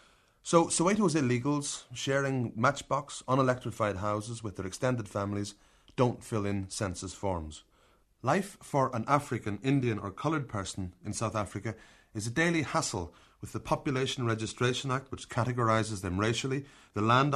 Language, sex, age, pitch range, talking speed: English, male, 30-49, 100-135 Hz, 145 wpm